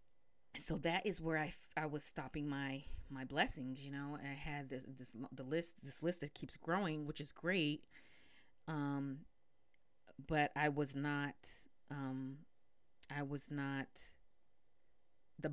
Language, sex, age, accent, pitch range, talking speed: English, female, 30-49, American, 135-150 Hz, 145 wpm